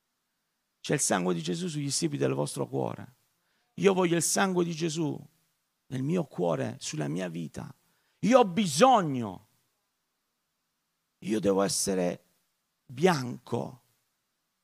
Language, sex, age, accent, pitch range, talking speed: Italian, male, 50-69, native, 120-175 Hz, 120 wpm